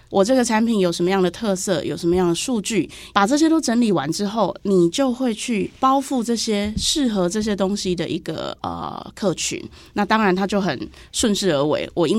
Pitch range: 170-215 Hz